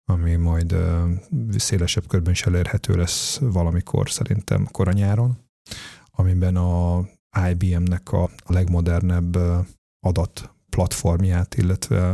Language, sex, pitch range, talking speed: Hungarian, male, 90-105 Hz, 85 wpm